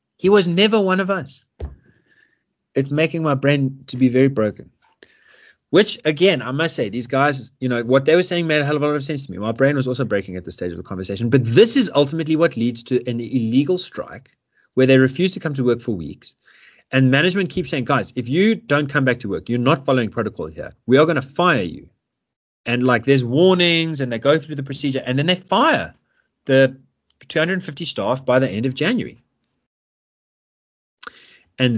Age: 30-49